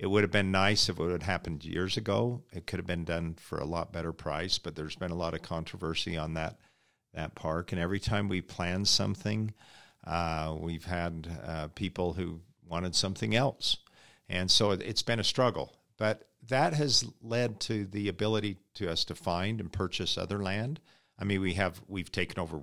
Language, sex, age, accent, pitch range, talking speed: English, male, 50-69, American, 85-105 Hz, 200 wpm